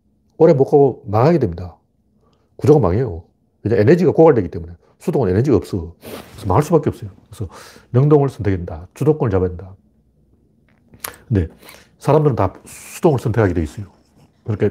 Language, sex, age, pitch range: Korean, male, 40-59, 100-140 Hz